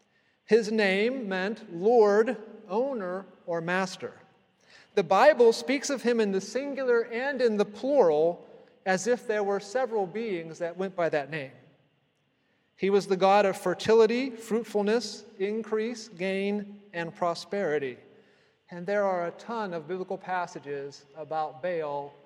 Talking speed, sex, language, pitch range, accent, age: 135 wpm, male, English, 170-215 Hz, American, 40-59